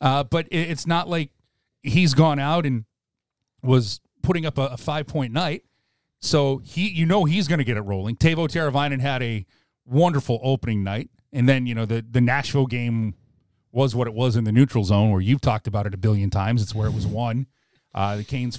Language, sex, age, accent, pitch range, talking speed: English, male, 40-59, American, 115-140 Hz, 205 wpm